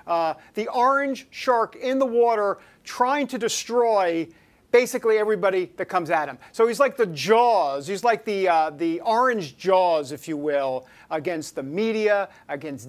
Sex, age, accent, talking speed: male, 50-69, American, 165 wpm